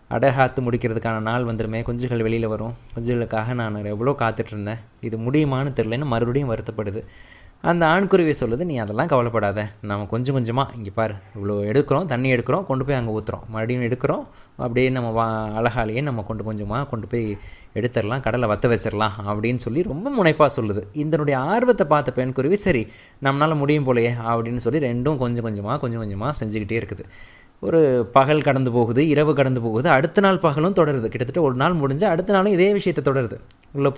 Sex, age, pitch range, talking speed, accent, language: male, 20-39, 115-150 Hz, 165 wpm, native, Tamil